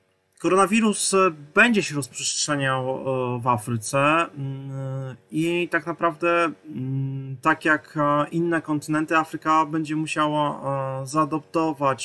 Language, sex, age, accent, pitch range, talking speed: Polish, male, 20-39, native, 120-145 Hz, 85 wpm